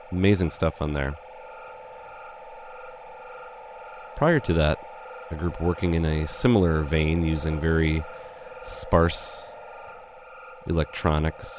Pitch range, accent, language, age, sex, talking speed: 75-95 Hz, American, English, 30-49, male, 95 wpm